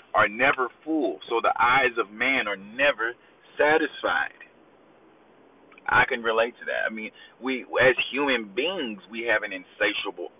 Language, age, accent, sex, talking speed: English, 30-49, American, male, 150 wpm